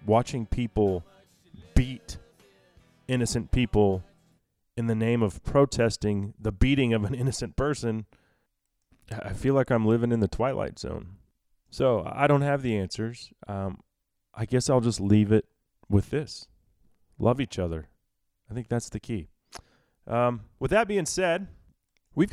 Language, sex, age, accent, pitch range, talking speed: English, male, 30-49, American, 100-130 Hz, 145 wpm